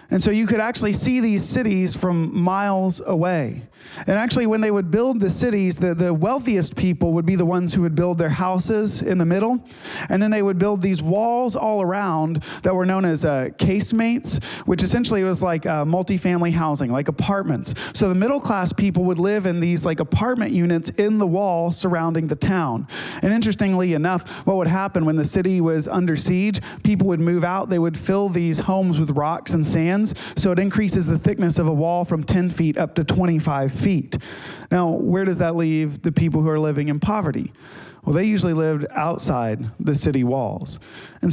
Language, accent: English, American